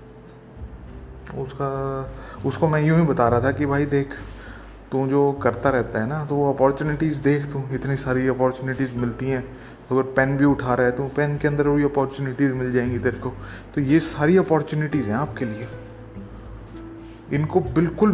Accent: native